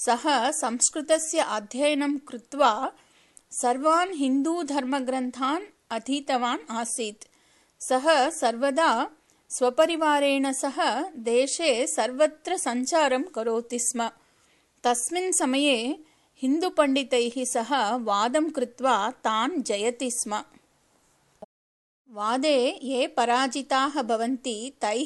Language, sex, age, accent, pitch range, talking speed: English, female, 30-49, Indian, 235-295 Hz, 75 wpm